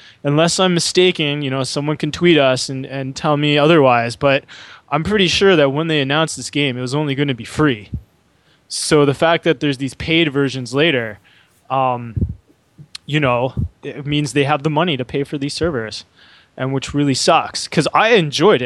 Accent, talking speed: American, 195 wpm